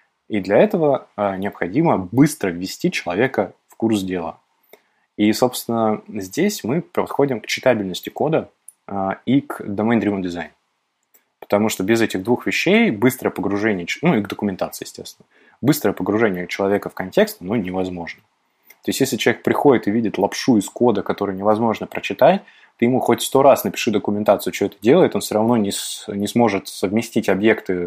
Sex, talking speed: male, 165 wpm